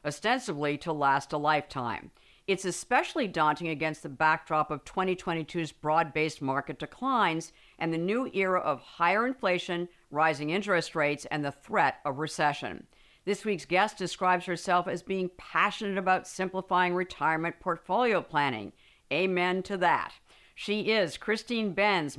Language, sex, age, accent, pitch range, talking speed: English, female, 50-69, American, 155-195 Hz, 140 wpm